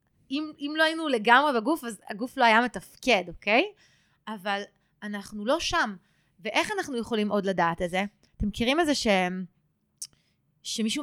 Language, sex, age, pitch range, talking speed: Hebrew, female, 20-39, 205-265 Hz, 160 wpm